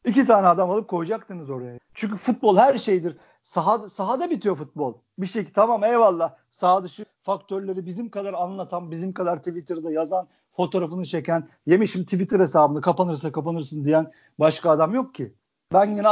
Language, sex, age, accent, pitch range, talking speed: Turkish, male, 50-69, native, 165-235 Hz, 160 wpm